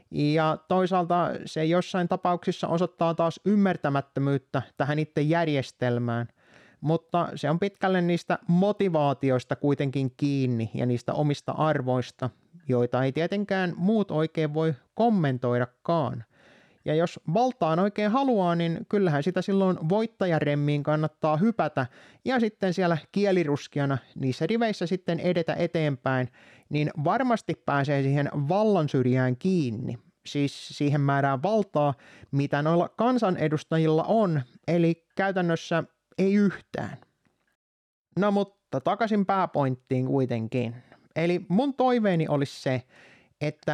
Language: Finnish